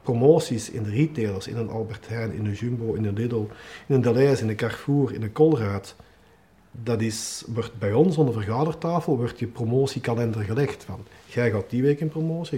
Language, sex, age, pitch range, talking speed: Dutch, male, 50-69, 115-150 Hz, 200 wpm